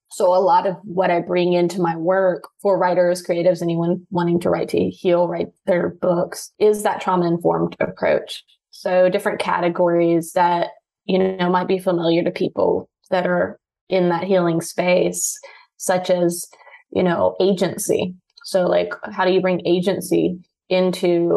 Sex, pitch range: female, 170-195 Hz